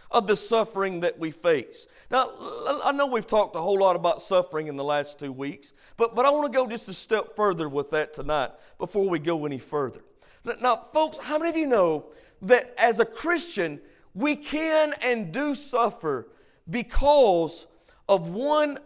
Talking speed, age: 185 wpm, 50-69